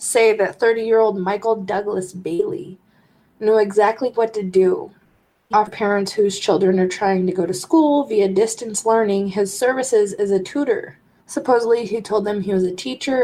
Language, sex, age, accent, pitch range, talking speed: English, female, 20-39, American, 185-220 Hz, 170 wpm